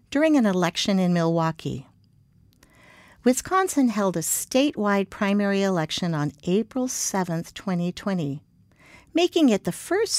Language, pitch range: English, 175-245 Hz